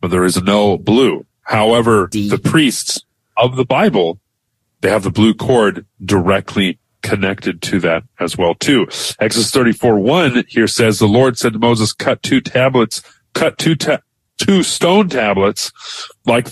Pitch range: 105-130 Hz